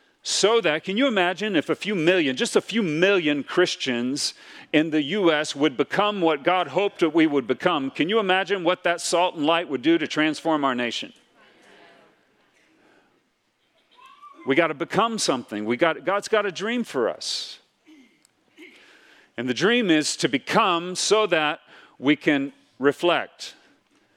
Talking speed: 160 wpm